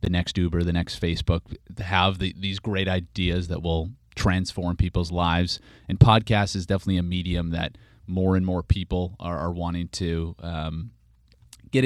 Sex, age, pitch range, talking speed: male, 30-49, 85-100 Hz, 160 wpm